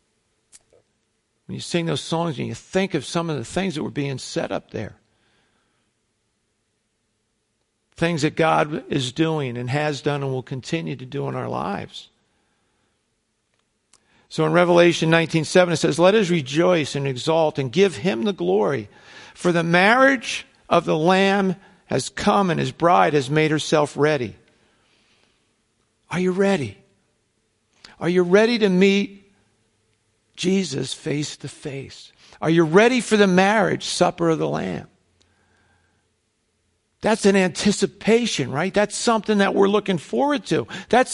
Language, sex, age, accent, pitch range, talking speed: English, male, 50-69, American, 140-205 Hz, 145 wpm